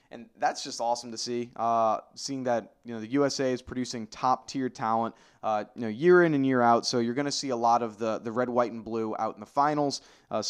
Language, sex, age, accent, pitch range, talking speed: English, male, 20-39, American, 110-135 Hz, 255 wpm